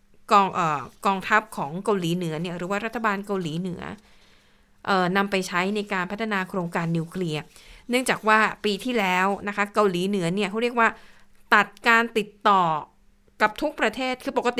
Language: Thai